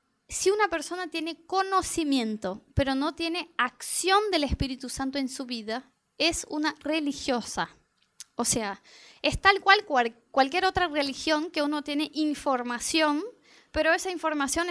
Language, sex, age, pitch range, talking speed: Spanish, female, 20-39, 255-340 Hz, 140 wpm